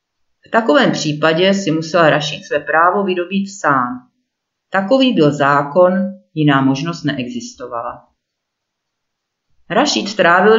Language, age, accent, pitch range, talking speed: Czech, 40-59, native, 150-210 Hz, 100 wpm